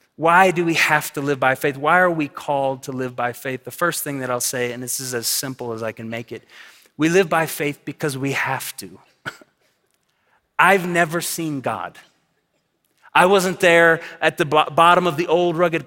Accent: American